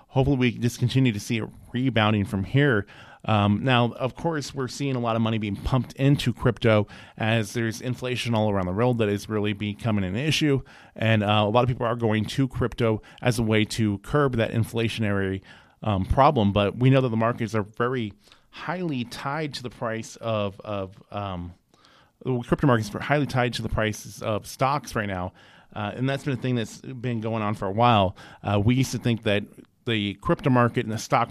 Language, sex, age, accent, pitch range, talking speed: English, male, 30-49, American, 105-125 Hz, 215 wpm